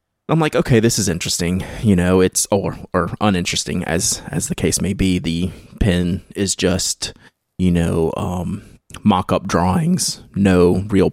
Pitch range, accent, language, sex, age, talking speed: 90-105 Hz, American, English, male, 20-39, 155 wpm